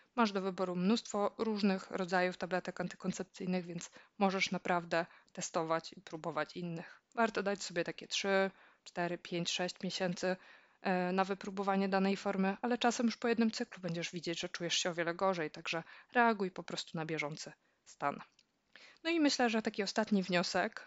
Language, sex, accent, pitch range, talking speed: Polish, female, native, 180-210 Hz, 160 wpm